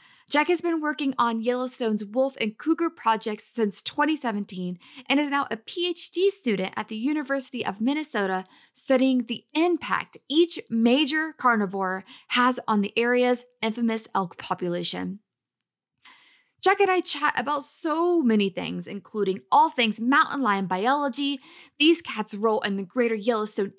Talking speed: 145 wpm